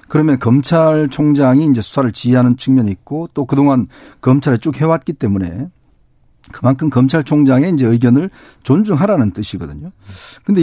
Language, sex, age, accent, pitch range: Korean, male, 50-69, native, 120-155 Hz